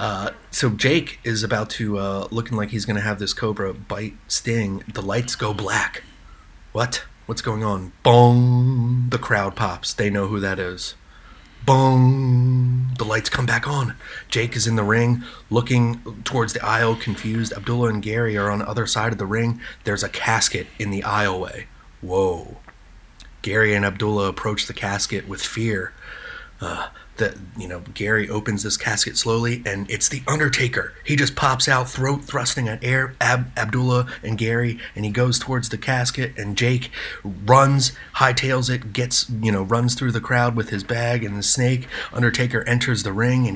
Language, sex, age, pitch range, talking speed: English, male, 30-49, 105-125 Hz, 180 wpm